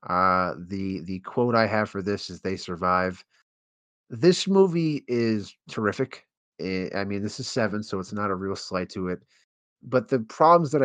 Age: 30-49